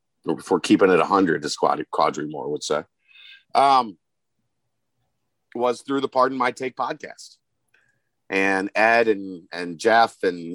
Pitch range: 110-140 Hz